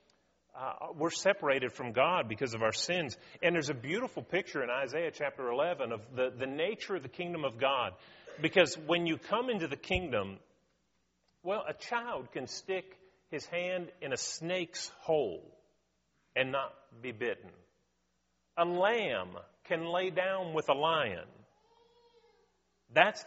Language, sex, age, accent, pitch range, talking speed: English, male, 40-59, American, 115-185 Hz, 150 wpm